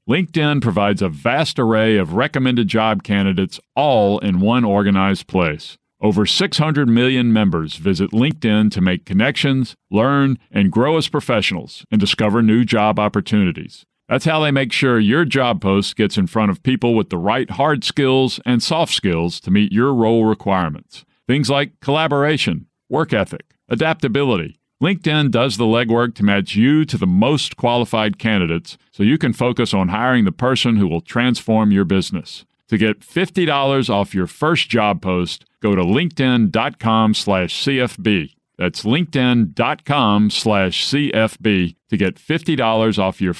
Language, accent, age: English, American, 50-69